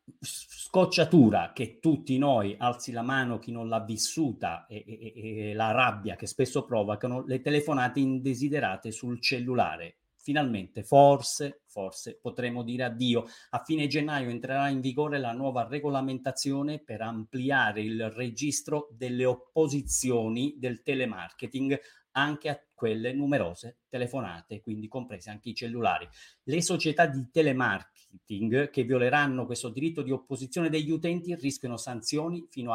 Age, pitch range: 40-59, 115-145 Hz